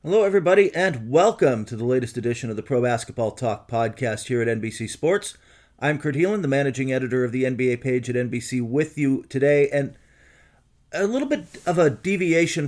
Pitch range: 115-145 Hz